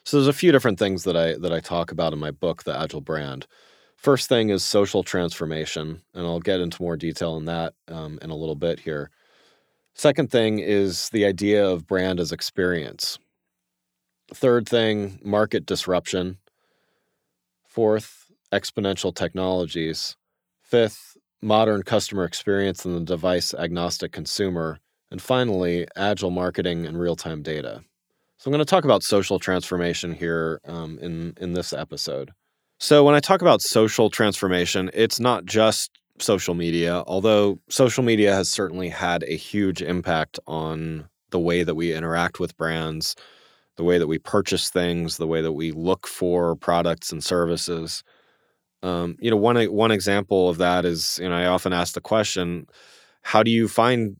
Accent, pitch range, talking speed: American, 85-105 Hz, 165 wpm